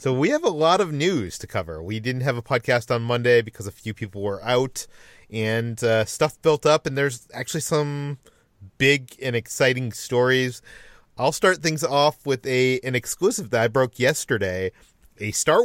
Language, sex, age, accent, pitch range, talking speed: English, male, 30-49, American, 115-140 Hz, 190 wpm